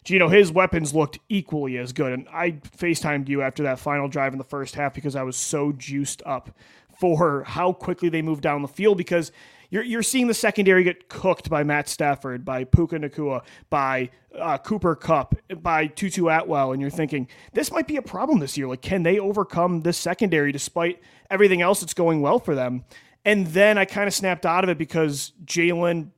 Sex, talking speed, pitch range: male, 205 wpm, 150-190 Hz